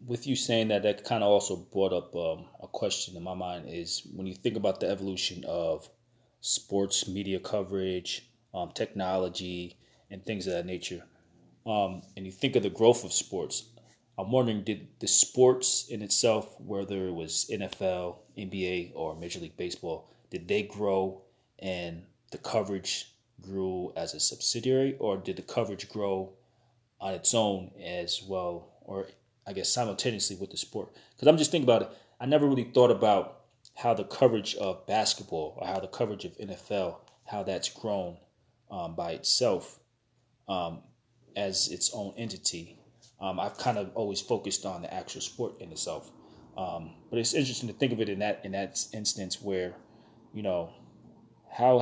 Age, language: 30-49, English